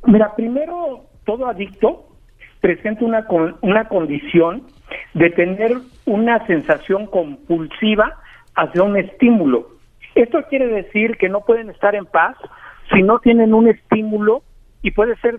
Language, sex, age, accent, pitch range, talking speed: Spanish, male, 50-69, Mexican, 170-230 Hz, 135 wpm